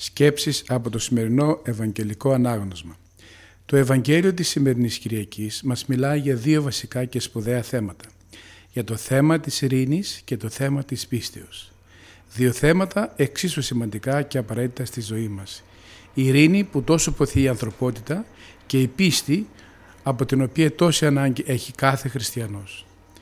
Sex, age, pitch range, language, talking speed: male, 50-69, 110-145 Hz, Greek, 145 wpm